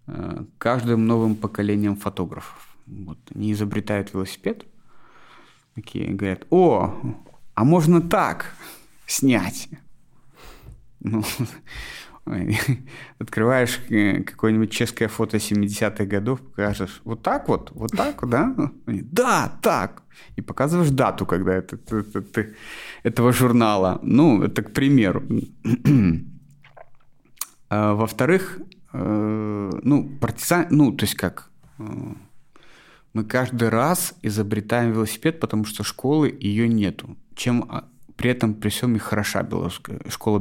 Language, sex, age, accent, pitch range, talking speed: Russian, male, 30-49, native, 105-125 Hz, 95 wpm